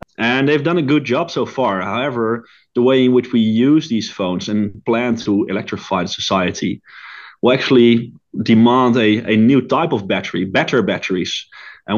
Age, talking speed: 30-49, 170 wpm